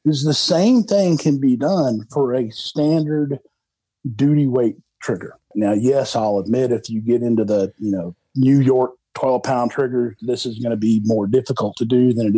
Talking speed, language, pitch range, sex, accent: 190 wpm, English, 110-130 Hz, male, American